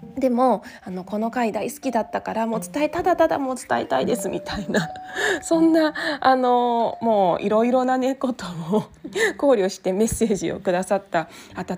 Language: Japanese